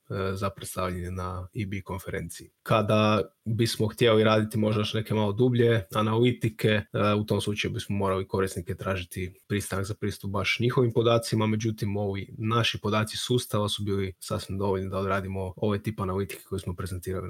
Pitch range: 100-115 Hz